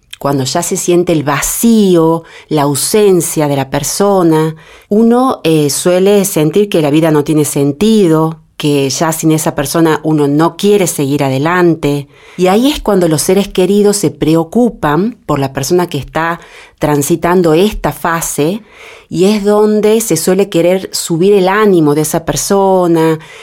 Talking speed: 155 wpm